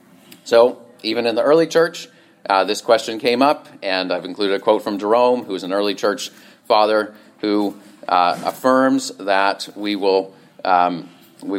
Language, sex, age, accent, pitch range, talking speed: English, male, 30-49, American, 100-135 Hz, 165 wpm